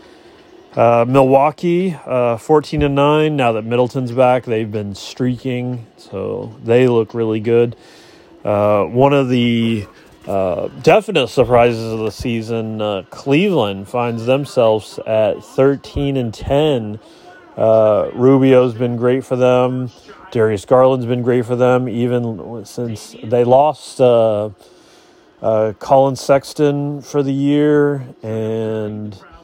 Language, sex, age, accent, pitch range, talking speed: English, male, 30-49, American, 110-130 Hz, 120 wpm